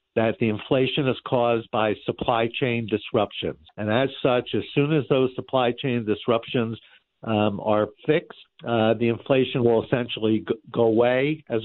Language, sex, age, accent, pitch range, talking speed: English, male, 60-79, American, 110-135 Hz, 160 wpm